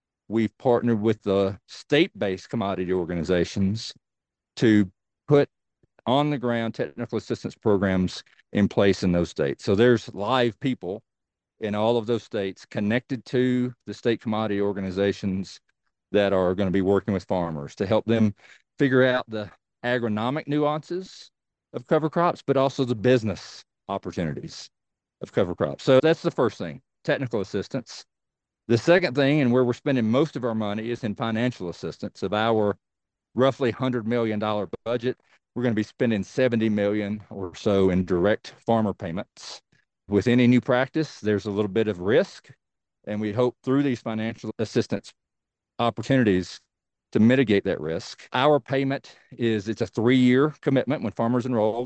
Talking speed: 160 wpm